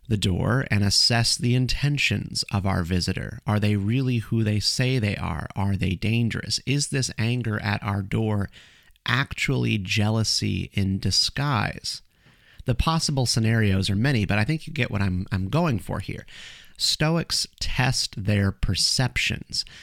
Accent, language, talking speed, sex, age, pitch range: American, English, 150 wpm, male, 30-49, 100-135 Hz